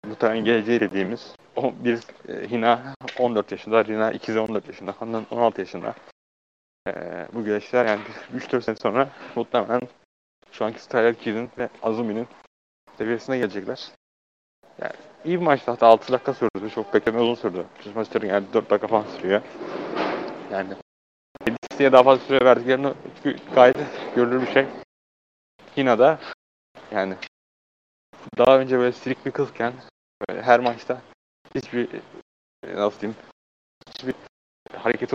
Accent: native